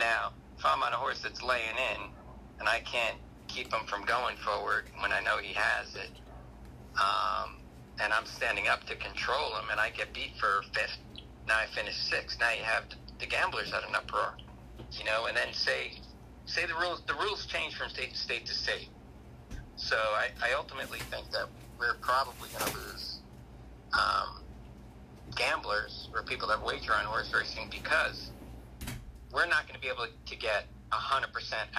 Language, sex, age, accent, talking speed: English, male, 40-59, American, 175 wpm